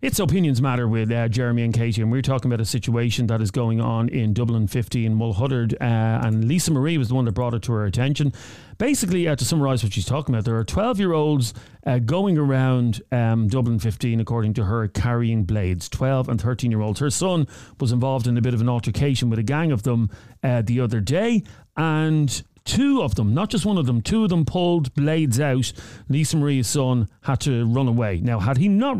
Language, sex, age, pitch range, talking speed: English, male, 40-59, 115-135 Hz, 215 wpm